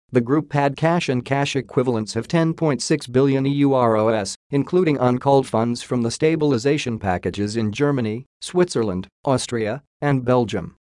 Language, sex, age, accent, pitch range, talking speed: English, male, 40-59, American, 110-145 Hz, 130 wpm